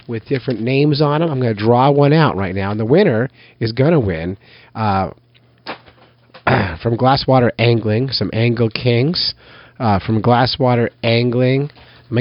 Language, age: English, 30-49